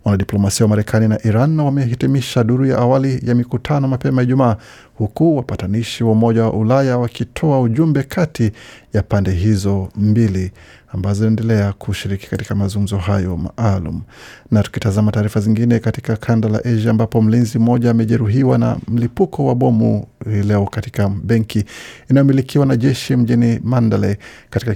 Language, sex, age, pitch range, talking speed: Swahili, male, 50-69, 105-125 Hz, 145 wpm